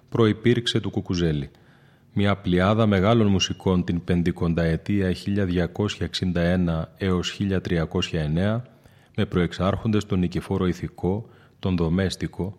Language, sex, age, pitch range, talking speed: Greek, male, 30-49, 90-110 Hz, 90 wpm